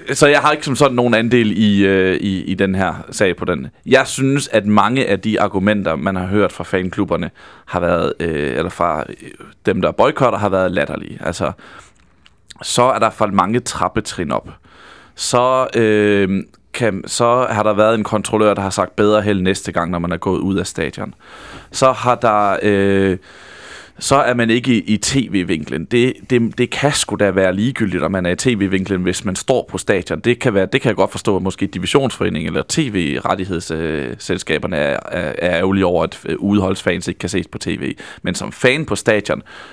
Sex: male